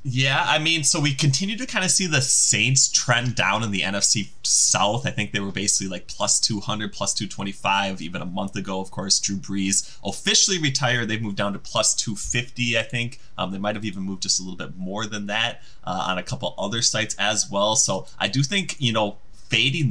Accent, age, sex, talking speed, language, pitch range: American, 20-39, male, 225 wpm, English, 100-125 Hz